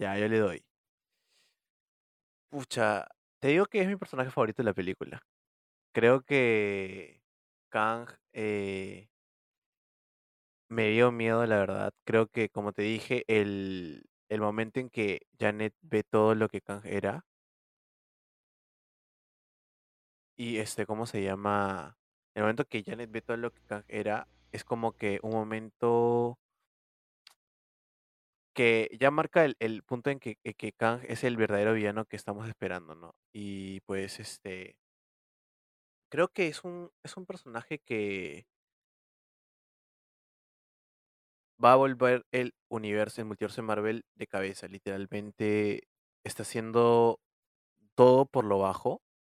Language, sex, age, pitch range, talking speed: Spanish, male, 20-39, 100-120 Hz, 130 wpm